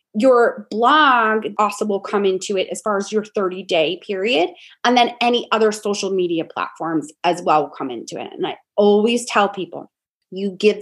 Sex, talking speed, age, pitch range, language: female, 185 wpm, 20-39, 190-255 Hz, English